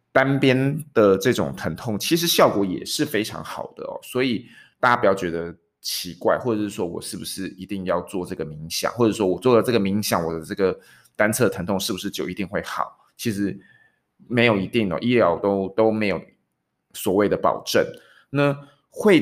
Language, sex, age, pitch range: Chinese, male, 20-39, 95-125 Hz